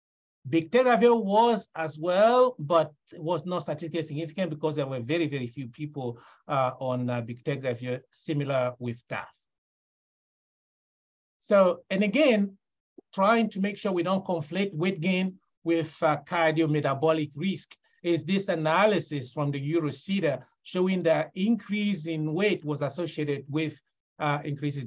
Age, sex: 50-69, male